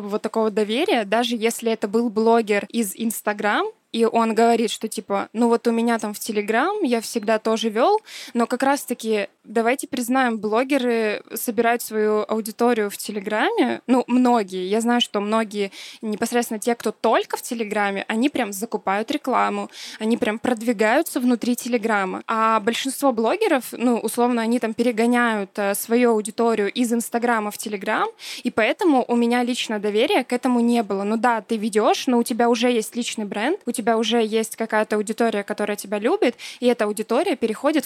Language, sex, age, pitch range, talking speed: Russian, female, 20-39, 220-245 Hz, 170 wpm